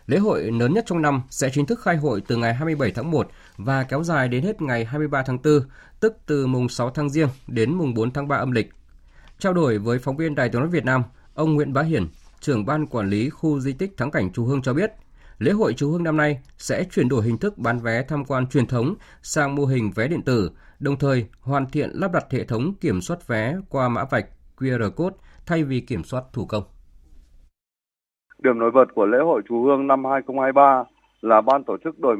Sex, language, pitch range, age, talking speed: male, Vietnamese, 115-150 Hz, 20-39, 235 wpm